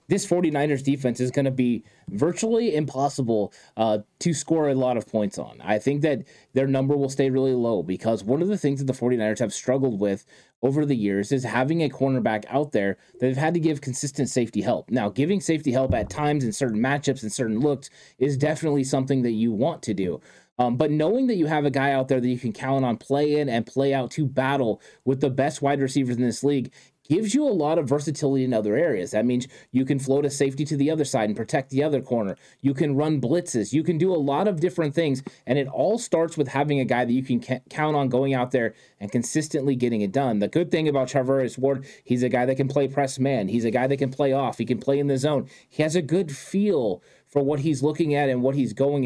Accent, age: American, 20-39